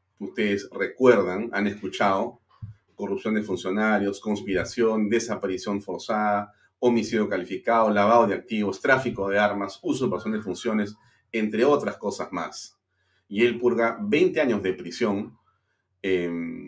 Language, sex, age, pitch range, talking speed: Spanish, male, 40-59, 95-115 Hz, 120 wpm